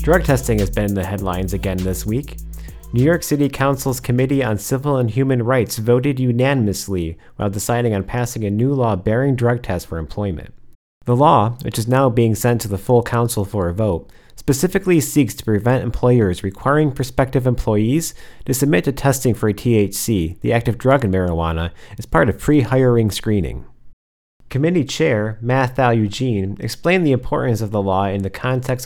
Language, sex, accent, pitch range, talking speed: English, male, American, 100-130 Hz, 180 wpm